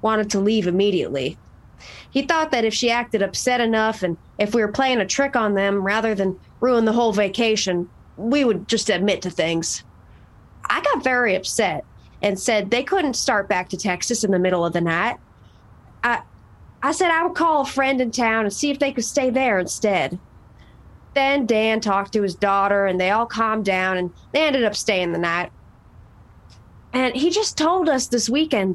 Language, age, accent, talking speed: English, 30-49, American, 195 wpm